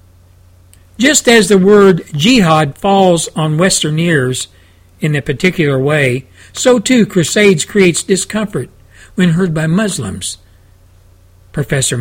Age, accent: 60-79, American